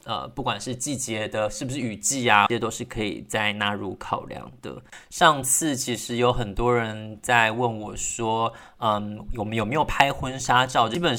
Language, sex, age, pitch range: Chinese, male, 20-39, 105-125 Hz